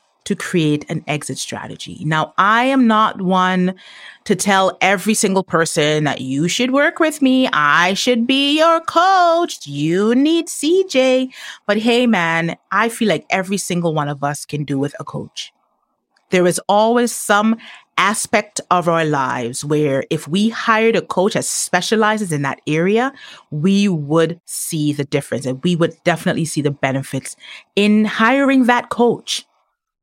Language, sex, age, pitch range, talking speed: English, female, 30-49, 165-250 Hz, 160 wpm